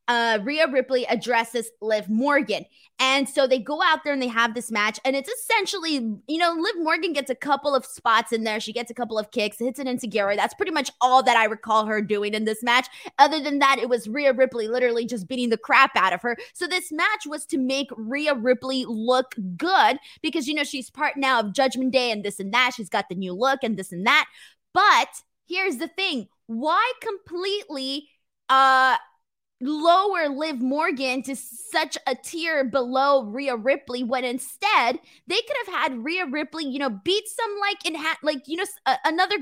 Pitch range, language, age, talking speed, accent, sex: 245-335 Hz, English, 20-39, 210 wpm, American, female